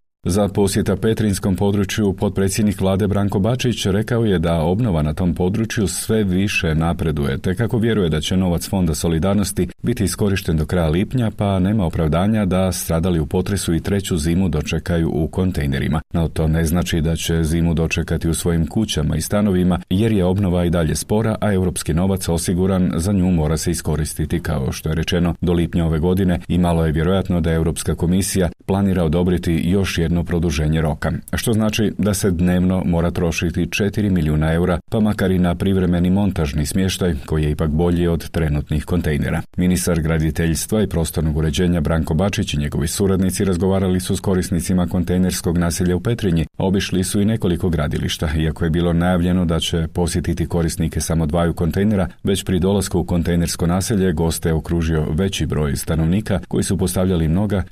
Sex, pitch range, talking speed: male, 80-95 Hz, 175 wpm